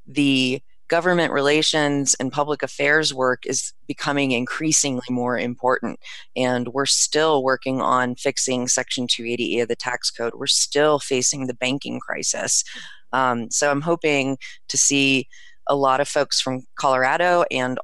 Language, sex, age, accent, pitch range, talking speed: English, female, 30-49, American, 125-145 Hz, 145 wpm